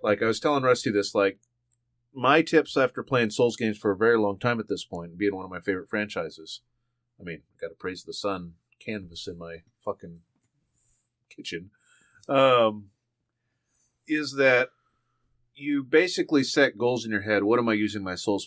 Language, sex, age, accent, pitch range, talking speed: English, male, 30-49, American, 100-125 Hz, 180 wpm